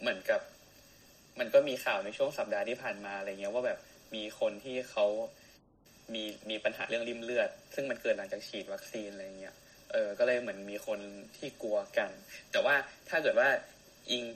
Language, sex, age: Thai, male, 20-39